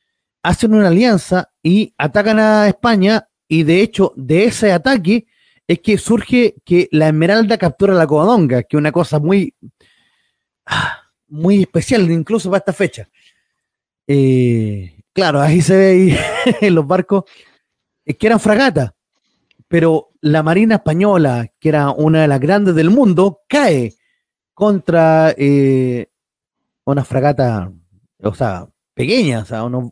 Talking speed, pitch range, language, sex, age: 140 wpm, 150-215 Hz, Spanish, male, 30-49